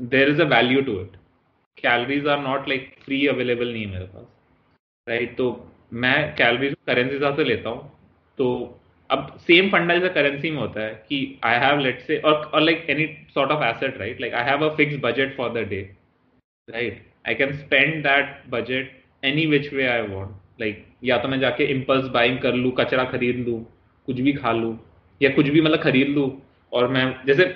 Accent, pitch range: native, 125-150 Hz